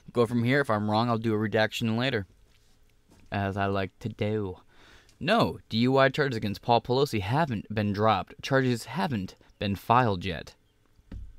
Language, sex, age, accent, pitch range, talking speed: English, male, 20-39, American, 105-130 Hz, 160 wpm